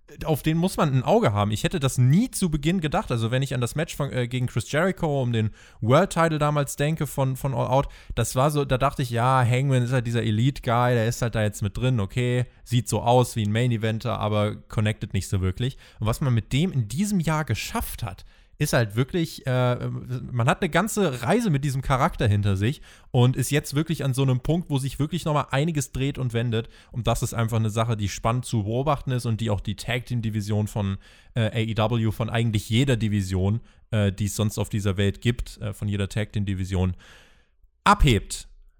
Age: 20-39